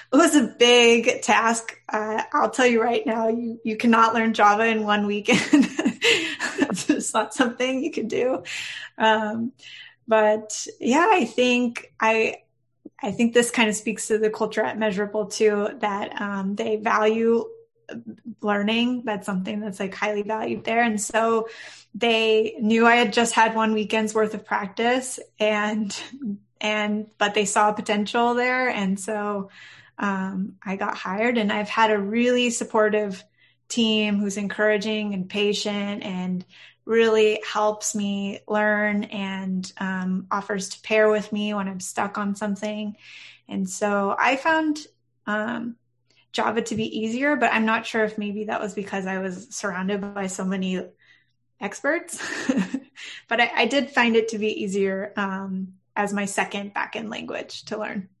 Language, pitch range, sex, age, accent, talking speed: English, 205-230 Hz, female, 20-39, American, 155 wpm